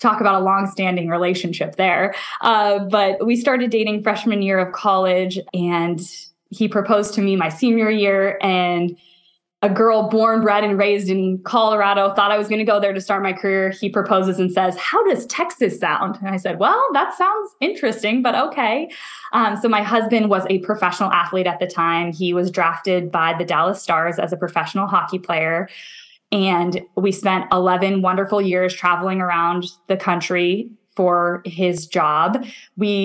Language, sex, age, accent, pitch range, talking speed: English, female, 10-29, American, 180-215 Hz, 175 wpm